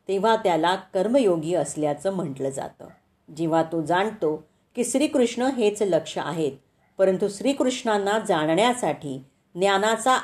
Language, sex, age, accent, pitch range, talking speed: Marathi, female, 40-59, native, 160-215 Hz, 105 wpm